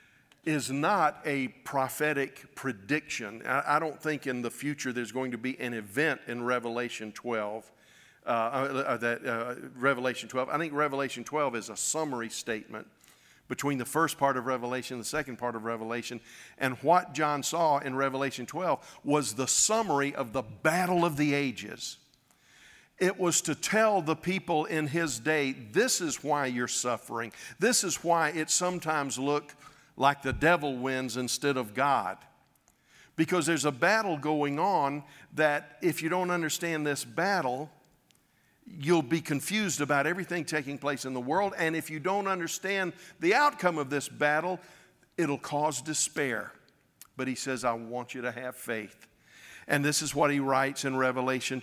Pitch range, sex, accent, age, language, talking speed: 130-160 Hz, male, American, 50-69, English, 165 wpm